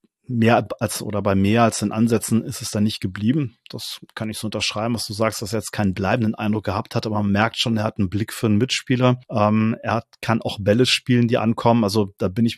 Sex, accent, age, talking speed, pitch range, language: male, German, 30-49, 255 wpm, 105-115 Hz, German